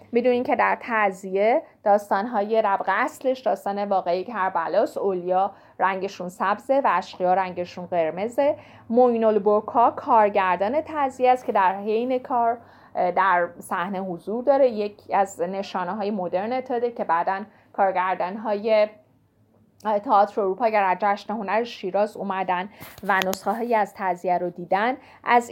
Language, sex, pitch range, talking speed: Persian, female, 180-220 Hz, 125 wpm